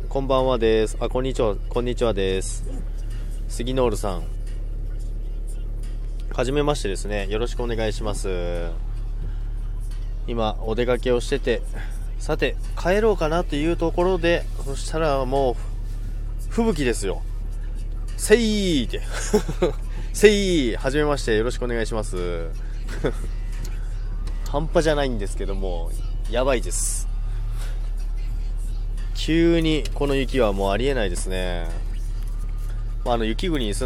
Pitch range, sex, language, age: 105-125 Hz, male, Japanese, 20-39